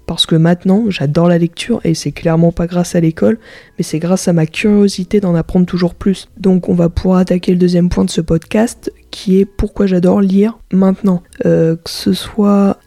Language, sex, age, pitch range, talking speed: French, female, 20-39, 170-205 Hz, 205 wpm